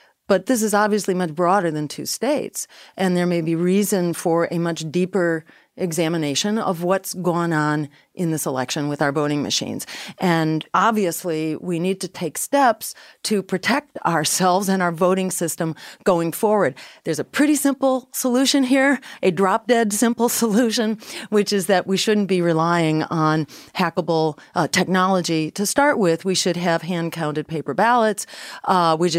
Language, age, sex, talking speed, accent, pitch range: English, 40-59, female, 160 wpm, American, 165-210 Hz